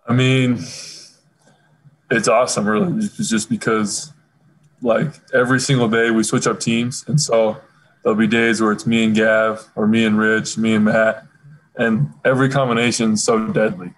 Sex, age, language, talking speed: male, 20-39, English, 170 wpm